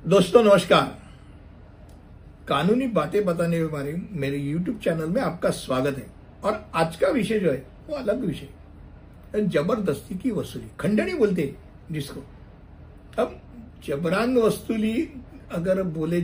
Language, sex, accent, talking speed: Hindi, male, native, 125 wpm